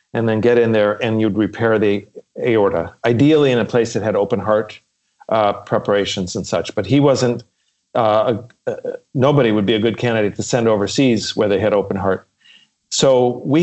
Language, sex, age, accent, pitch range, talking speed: English, male, 40-59, American, 105-130 Hz, 195 wpm